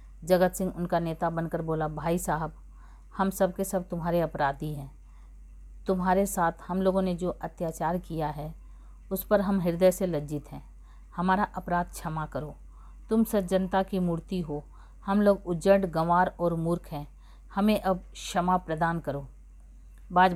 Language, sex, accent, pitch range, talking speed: Hindi, female, native, 160-190 Hz, 155 wpm